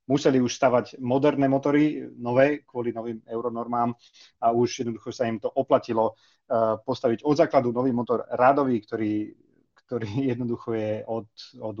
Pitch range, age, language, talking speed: 115-135 Hz, 30-49, Slovak, 140 wpm